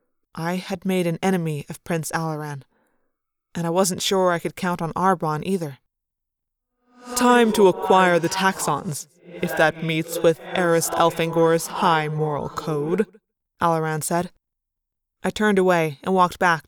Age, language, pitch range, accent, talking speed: 20-39, English, 160-195 Hz, American, 145 wpm